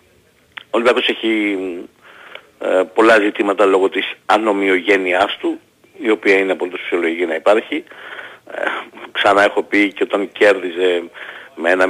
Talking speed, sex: 130 wpm, male